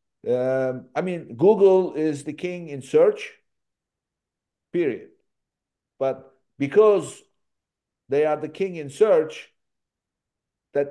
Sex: male